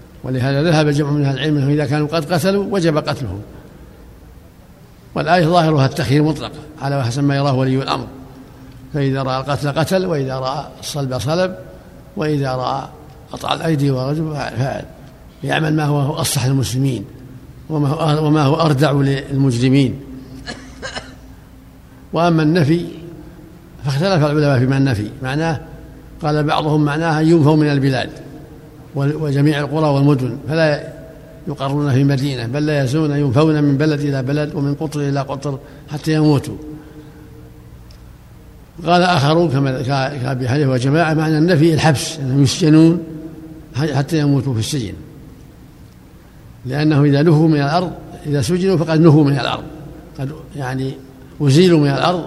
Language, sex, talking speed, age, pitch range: Arabic, male, 125 wpm, 60-79, 135-155 Hz